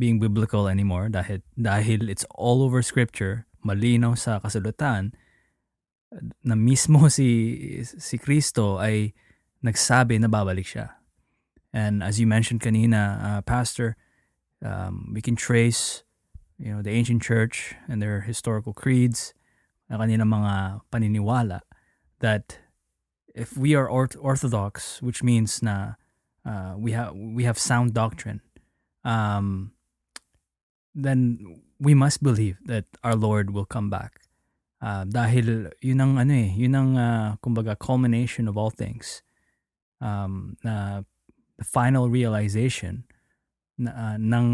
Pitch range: 105-120 Hz